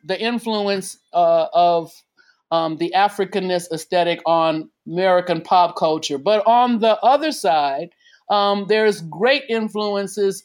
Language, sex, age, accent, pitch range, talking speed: English, male, 50-69, American, 170-200 Hz, 120 wpm